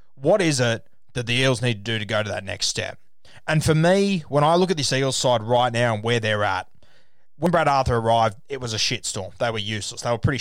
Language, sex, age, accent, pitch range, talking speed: English, male, 20-39, Australian, 110-145 Hz, 260 wpm